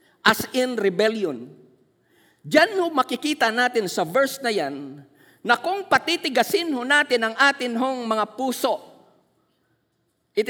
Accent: native